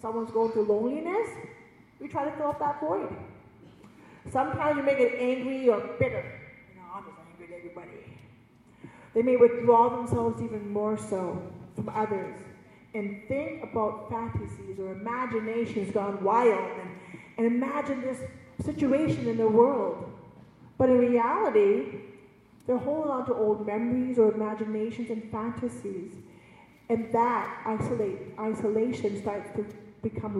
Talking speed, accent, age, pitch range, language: 135 wpm, American, 40-59, 210-265 Hz, English